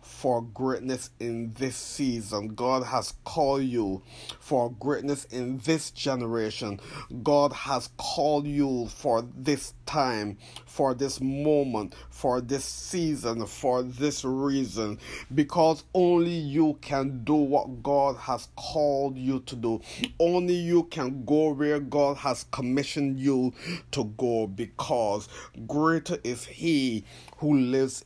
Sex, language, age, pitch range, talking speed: male, English, 30-49, 115-145 Hz, 125 wpm